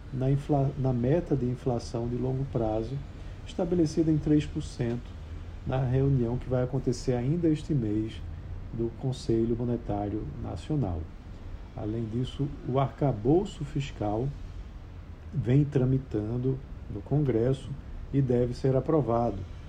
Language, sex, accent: Portuguese, male, Brazilian